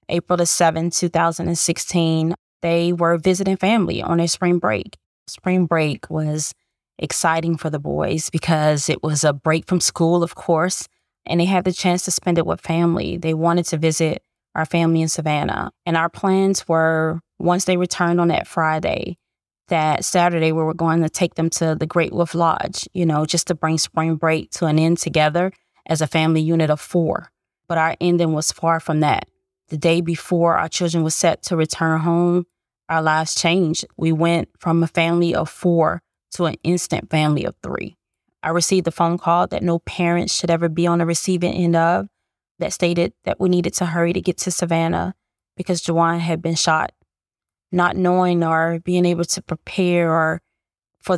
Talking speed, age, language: 190 wpm, 20-39, English